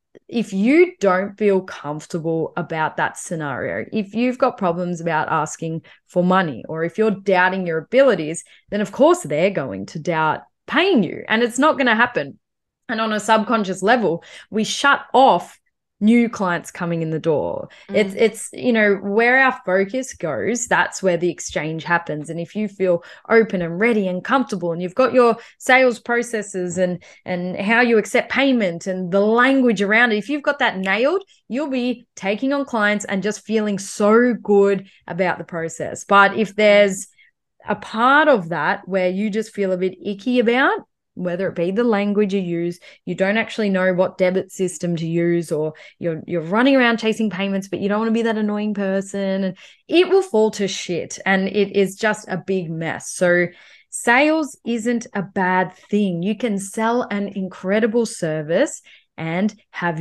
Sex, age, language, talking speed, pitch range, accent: female, 10-29, English, 180 wpm, 180-230 Hz, Australian